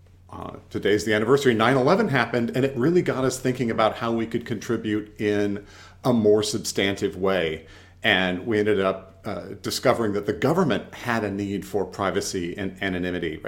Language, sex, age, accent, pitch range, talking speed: English, male, 40-59, American, 95-120 Hz, 170 wpm